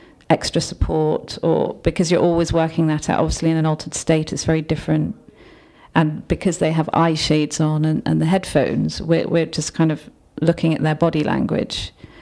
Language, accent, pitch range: English, British, 155-165 Hz